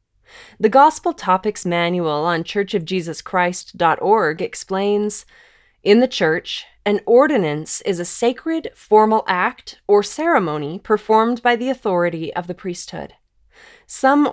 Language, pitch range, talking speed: English, 175-220 Hz, 115 wpm